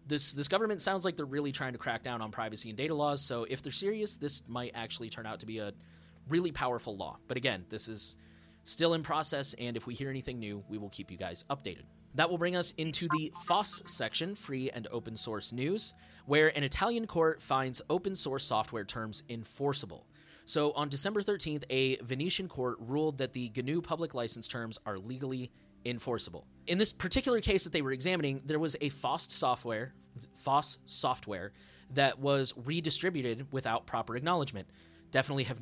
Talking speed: 190 wpm